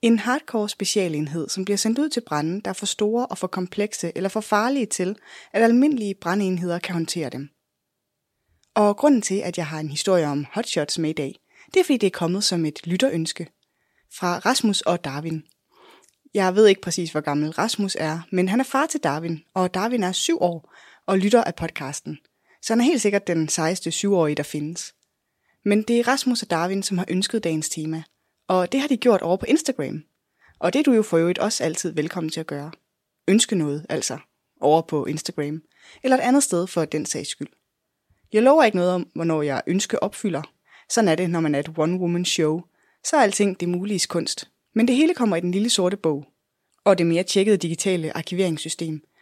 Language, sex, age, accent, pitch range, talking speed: Danish, female, 20-39, native, 160-215 Hz, 205 wpm